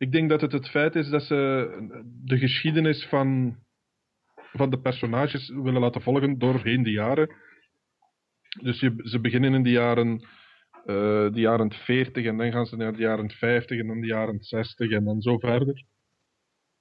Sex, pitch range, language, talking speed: male, 120-140 Hz, English, 175 wpm